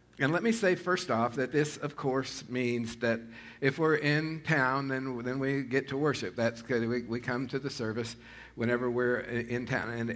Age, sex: 50-69, male